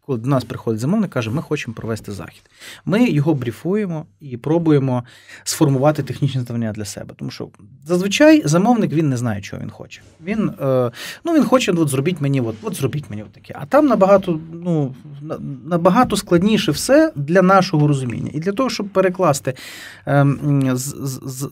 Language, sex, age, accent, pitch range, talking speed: Ukrainian, male, 30-49, native, 125-175 Hz, 165 wpm